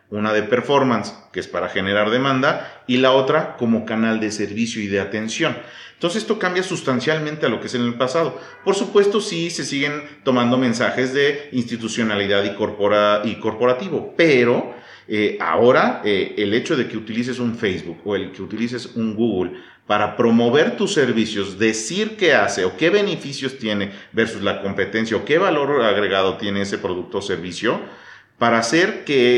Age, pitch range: 40-59, 110-145 Hz